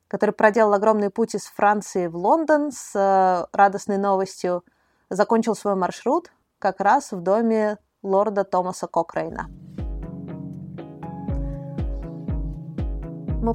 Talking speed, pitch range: 95 wpm, 190-235 Hz